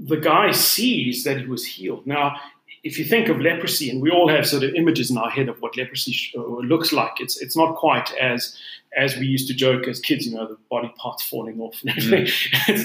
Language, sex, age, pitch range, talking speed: English, male, 40-59, 125-165 Hz, 230 wpm